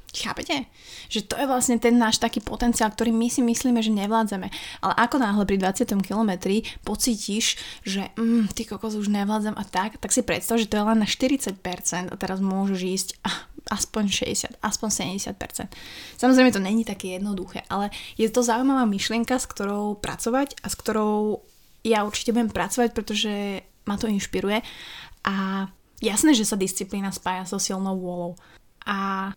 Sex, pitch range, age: female, 195-230 Hz, 20-39